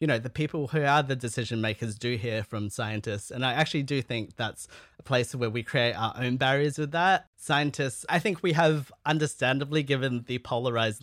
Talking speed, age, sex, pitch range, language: 205 wpm, 30-49, male, 110-135 Hz, English